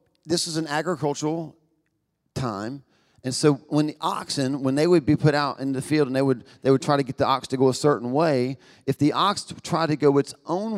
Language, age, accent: English, 40-59, American